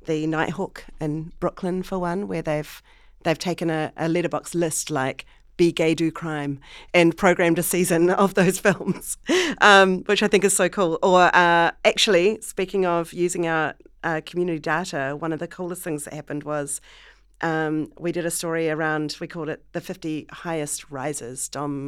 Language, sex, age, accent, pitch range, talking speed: English, female, 40-59, Australian, 145-175 Hz, 180 wpm